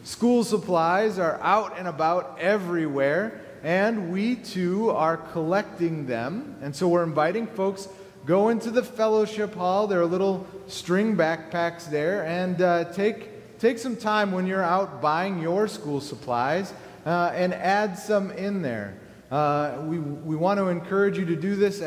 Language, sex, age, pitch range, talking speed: English, male, 30-49, 145-195 Hz, 160 wpm